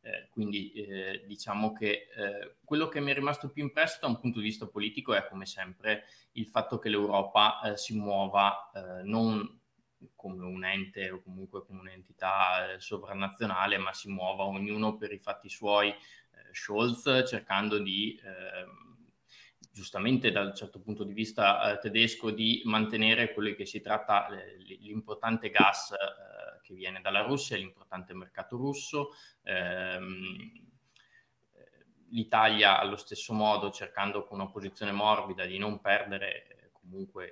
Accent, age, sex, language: native, 20-39, male, Italian